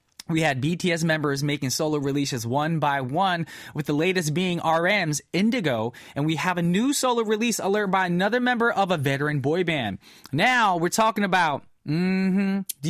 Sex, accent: male, American